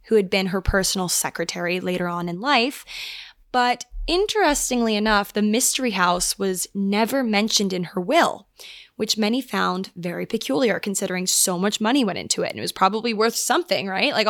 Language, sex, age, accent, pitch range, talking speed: English, female, 20-39, American, 190-245 Hz, 175 wpm